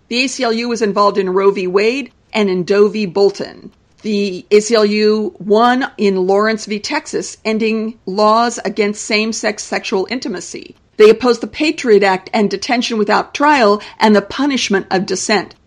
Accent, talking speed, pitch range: American, 155 wpm, 200-245 Hz